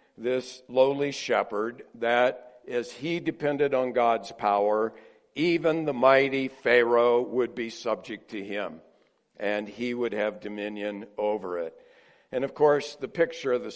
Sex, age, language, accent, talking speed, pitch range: male, 60-79, English, American, 145 wpm, 110-130 Hz